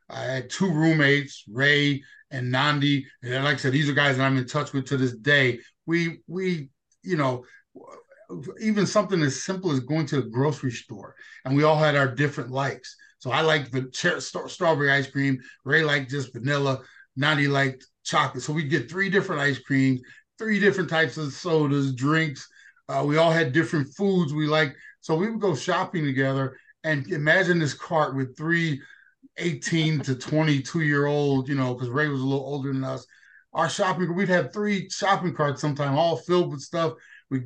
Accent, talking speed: American, 190 wpm